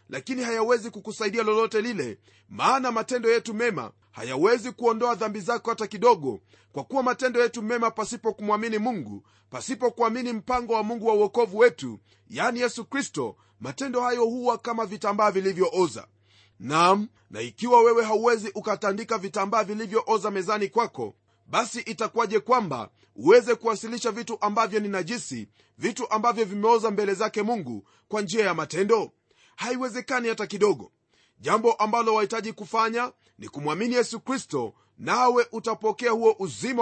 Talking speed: 140 wpm